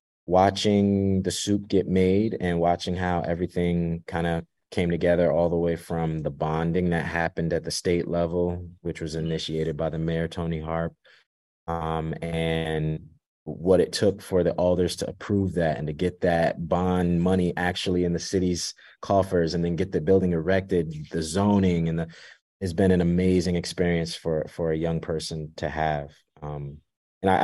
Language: English